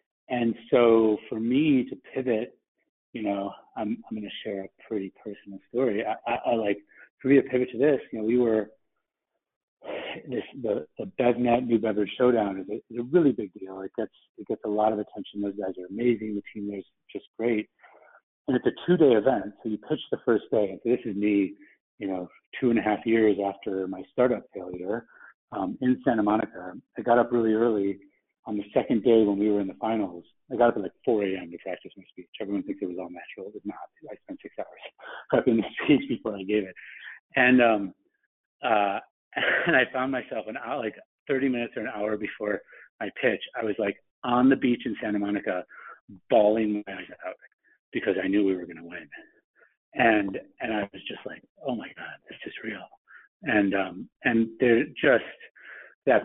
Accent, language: American, English